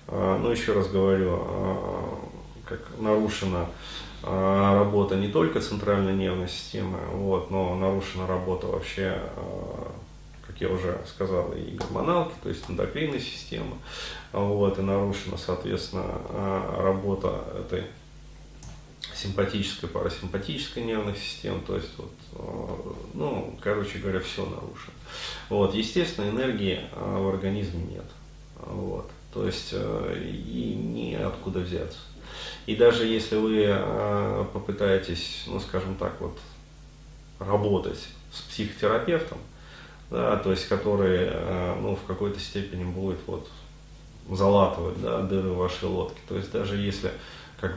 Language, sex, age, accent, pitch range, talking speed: Russian, male, 30-49, native, 95-100 Hz, 105 wpm